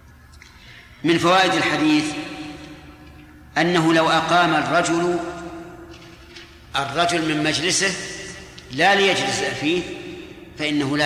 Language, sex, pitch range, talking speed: Arabic, male, 140-170 Hz, 80 wpm